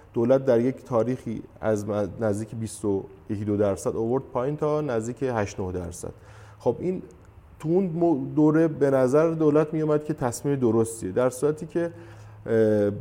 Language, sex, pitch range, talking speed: Persian, male, 100-135 Hz, 140 wpm